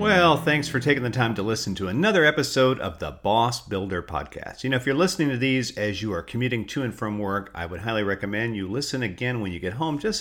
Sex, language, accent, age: male, English, American, 50-69